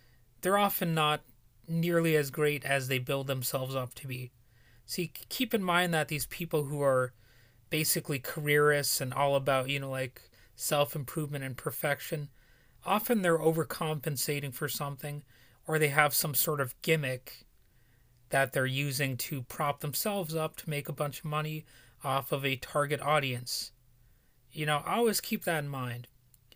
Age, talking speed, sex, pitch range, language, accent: 30-49, 160 wpm, male, 125-155 Hz, English, American